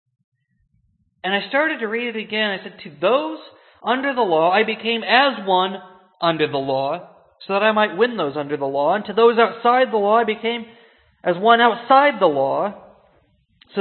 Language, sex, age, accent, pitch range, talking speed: English, male, 40-59, American, 185-245 Hz, 190 wpm